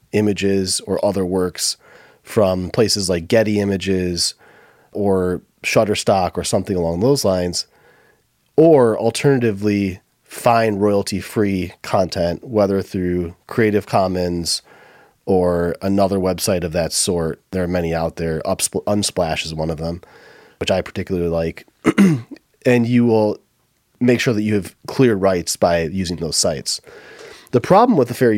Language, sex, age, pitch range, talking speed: English, male, 30-49, 95-120 Hz, 135 wpm